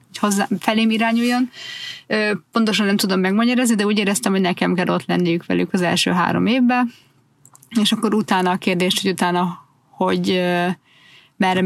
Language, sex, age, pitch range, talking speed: Hungarian, female, 30-49, 180-220 Hz, 155 wpm